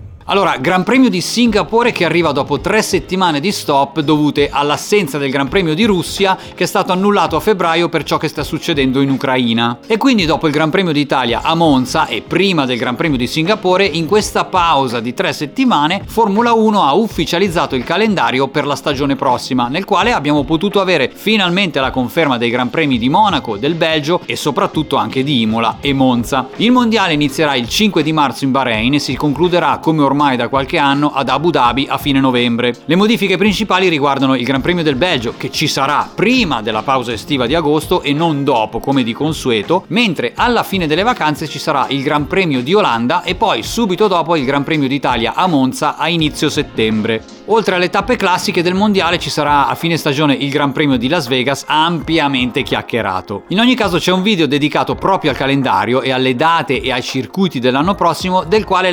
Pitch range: 135-185 Hz